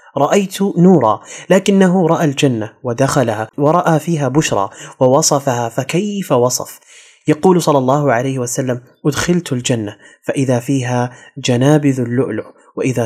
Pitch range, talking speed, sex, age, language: 125-145 Hz, 110 wpm, male, 30-49, Arabic